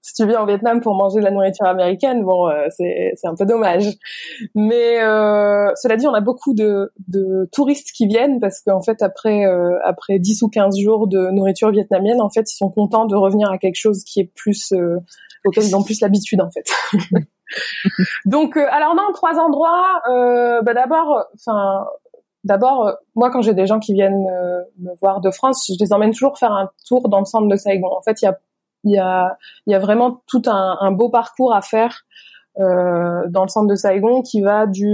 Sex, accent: female, French